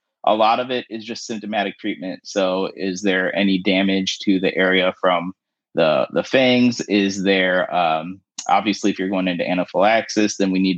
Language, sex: English, male